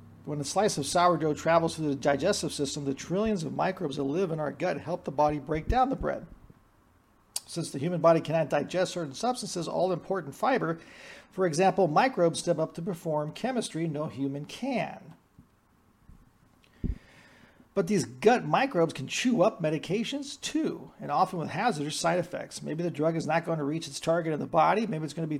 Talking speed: 190 wpm